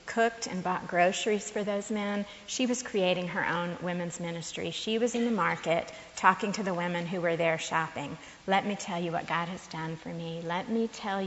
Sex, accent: female, American